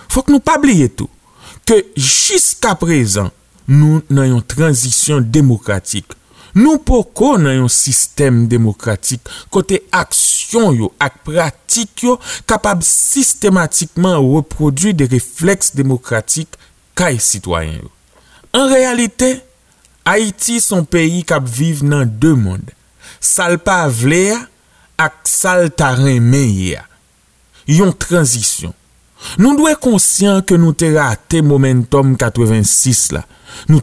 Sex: male